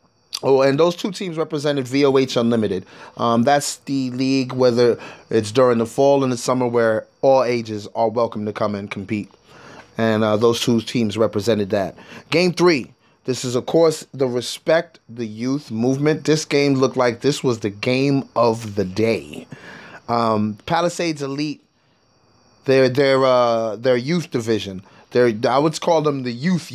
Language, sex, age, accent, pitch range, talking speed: English, male, 20-39, American, 120-150 Hz, 160 wpm